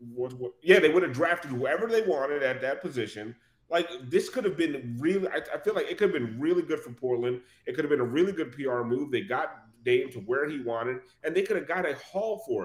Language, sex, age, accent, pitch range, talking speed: English, male, 30-49, American, 120-180 Hz, 240 wpm